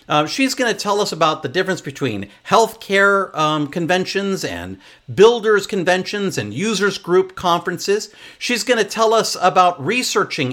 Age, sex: 50-69, male